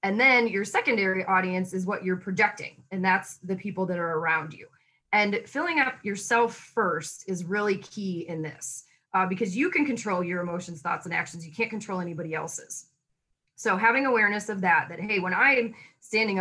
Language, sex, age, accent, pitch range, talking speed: English, female, 20-39, American, 175-225 Hz, 195 wpm